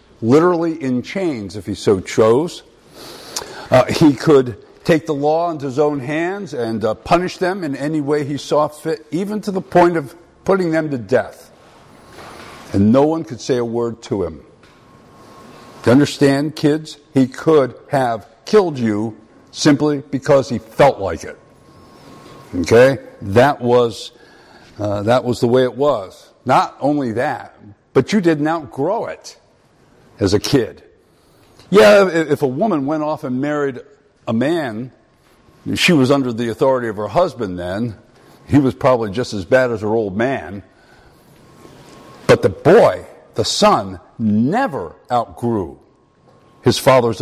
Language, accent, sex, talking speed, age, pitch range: English, American, male, 150 wpm, 50-69, 115-155 Hz